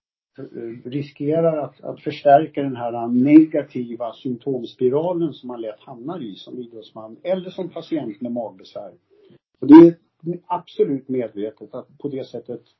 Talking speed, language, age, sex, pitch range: 130 wpm, Swedish, 50-69, male, 115-165 Hz